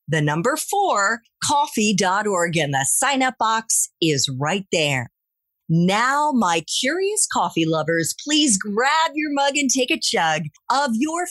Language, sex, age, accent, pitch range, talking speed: English, female, 40-59, American, 170-275 Hz, 145 wpm